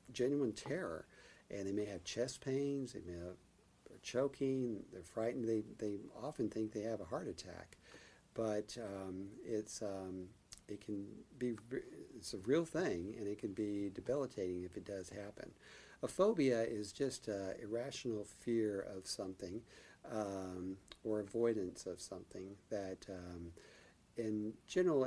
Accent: American